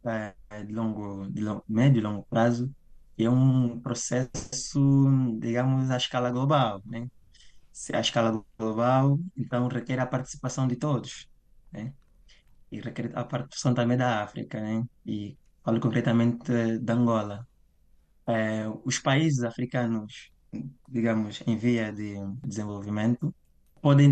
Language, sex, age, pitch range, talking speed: Portuguese, male, 20-39, 115-135 Hz, 125 wpm